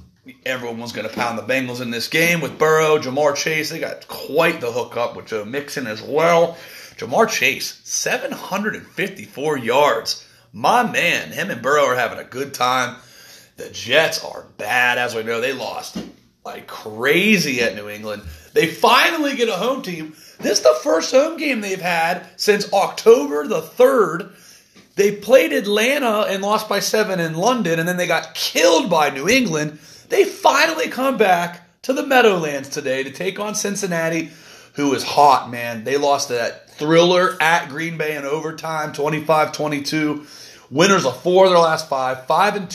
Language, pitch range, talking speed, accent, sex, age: English, 150-200 Hz, 170 wpm, American, male, 30-49